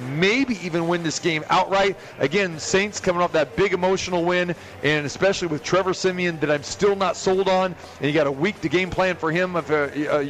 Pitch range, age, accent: 160-200 Hz, 40-59, American